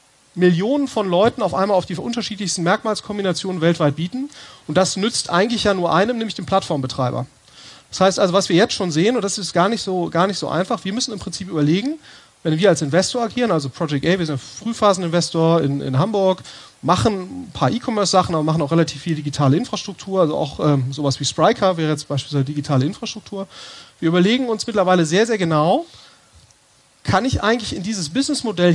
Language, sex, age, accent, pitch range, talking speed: German, male, 30-49, German, 155-210 Hz, 195 wpm